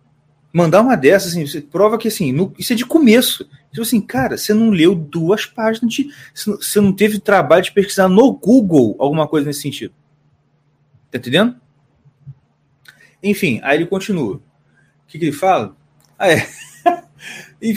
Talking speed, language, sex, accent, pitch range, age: 160 wpm, Portuguese, male, Brazilian, 145-215 Hz, 30-49